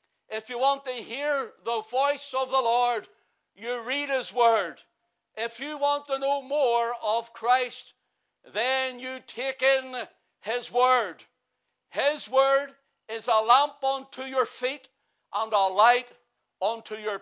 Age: 60-79